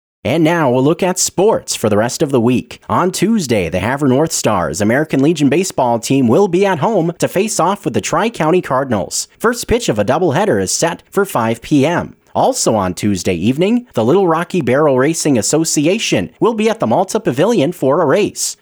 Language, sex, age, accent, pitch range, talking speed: English, male, 30-49, American, 125-180 Hz, 200 wpm